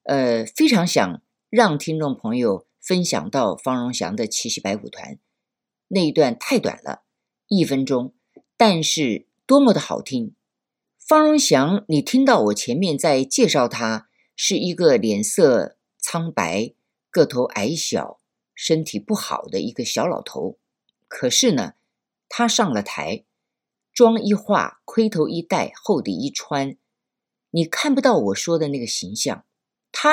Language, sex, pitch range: Chinese, female, 155-245 Hz